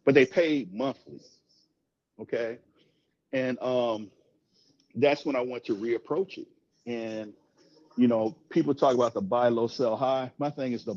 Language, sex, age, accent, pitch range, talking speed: English, male, 40-59, American, 115-155 Hz, 160 wpm